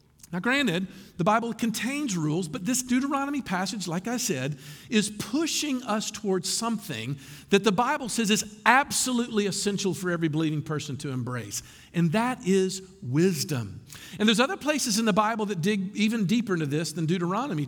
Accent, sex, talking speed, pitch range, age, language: American, male, 170 wpm, 165-235 Hz, 50-69, English